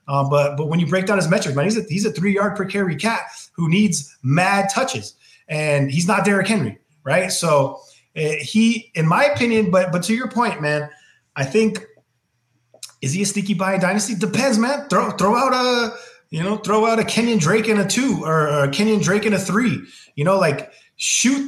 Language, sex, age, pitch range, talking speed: English, male, 30-49, 145-210 Hz, 210 wpm